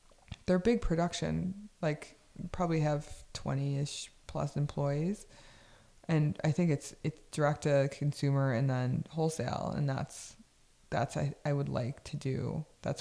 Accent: American